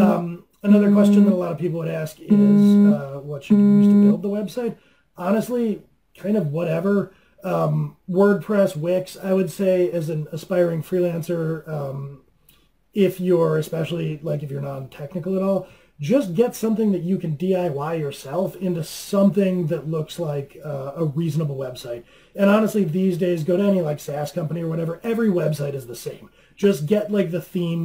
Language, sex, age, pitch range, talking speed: English, male, 30-49, 150-190 Hz, 175 wpm